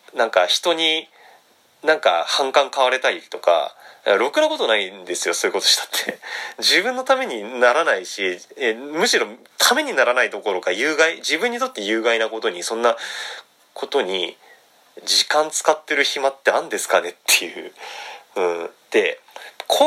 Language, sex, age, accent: Japanese, male, 30-49, native